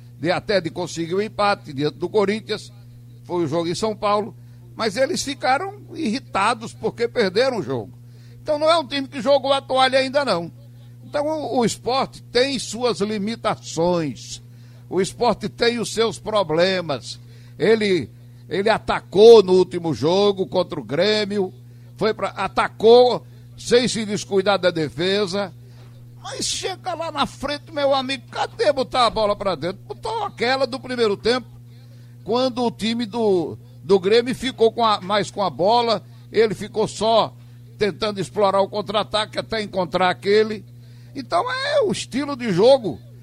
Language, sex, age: Portuguese, male, 60-79